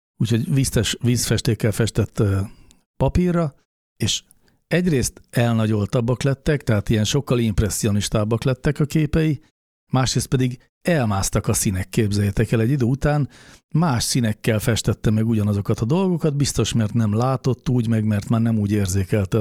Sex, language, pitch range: male, Hungarian, 105-130 Hz